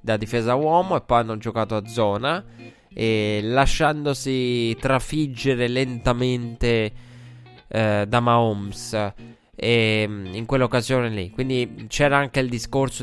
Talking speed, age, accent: 115 wpm, 20-39, native